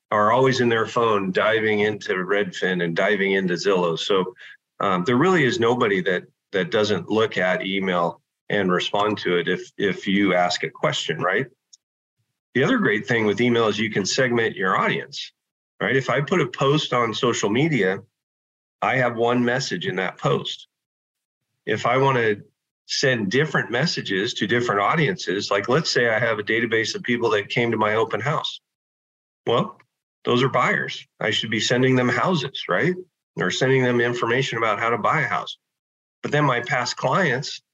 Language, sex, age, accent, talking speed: English, male, 40-59, American, 180 wpm